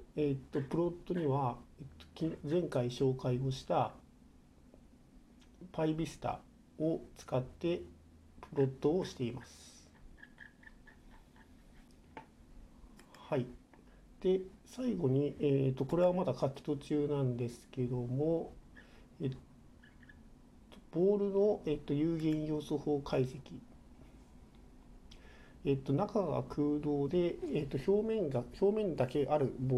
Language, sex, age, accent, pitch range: Japanese, male, 50-69, native, 125-170 Hz